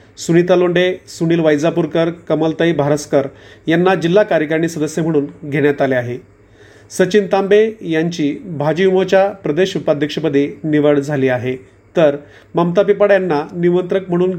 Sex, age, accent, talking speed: male, 40-59, native, 120 wpm